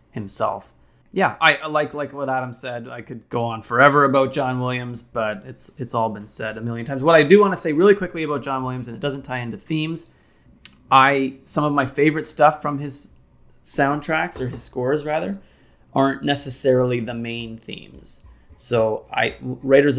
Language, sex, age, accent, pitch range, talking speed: English, male, 30-49, American, 115-140 Hz, 190 wpm